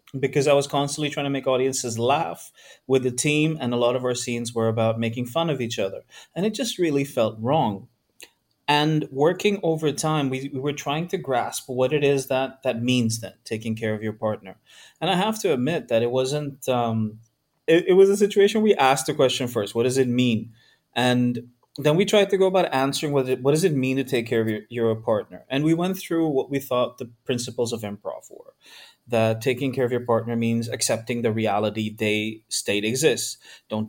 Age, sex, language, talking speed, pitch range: 30-49, male, English, 220 wpm, 115-150 Hz